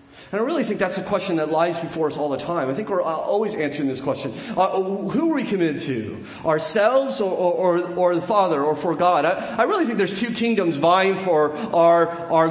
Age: 30-49